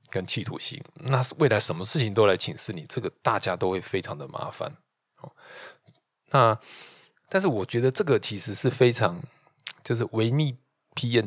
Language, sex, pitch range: Chinese, male, 100-130 Hz